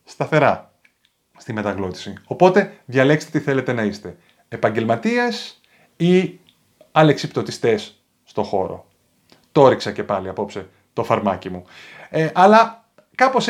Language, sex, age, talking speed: Greek, male, 30-49, 105 wpm